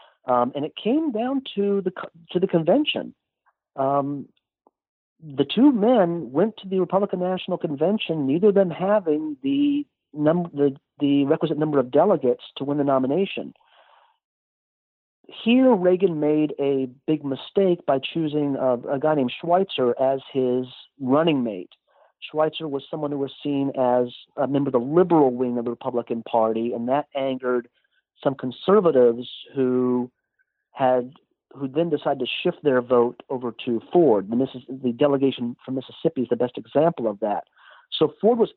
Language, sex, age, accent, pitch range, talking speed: English, male, 50-69, American, 135-185 Hz, 160 wpm